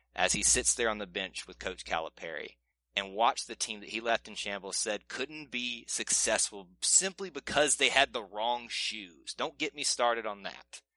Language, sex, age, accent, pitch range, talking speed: English, male, 30-49, American, 95-115 Hz, 195 wpm